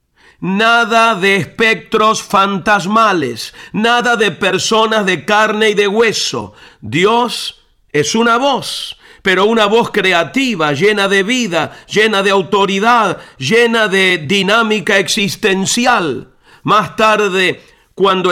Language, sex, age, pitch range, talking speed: Spanish, male, 50-69, 185-225 Hz, 110 wpm